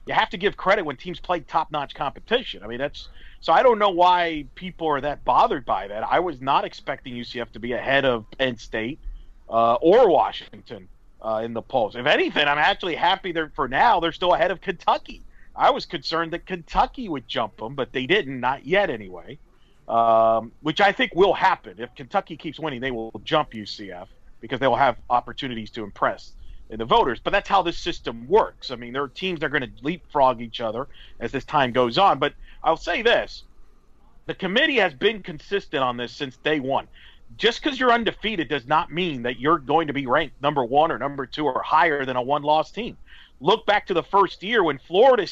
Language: English